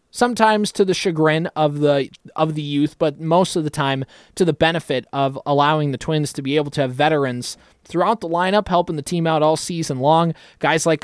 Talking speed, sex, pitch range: 210 wpm, male, 140-175 Hz